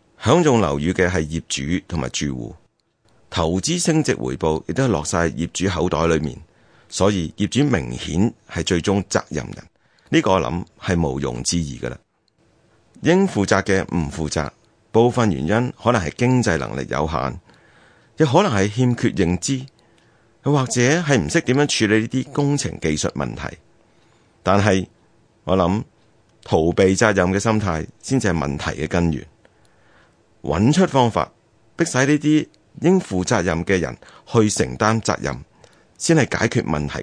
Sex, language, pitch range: male, Chinese, 85-125 Hz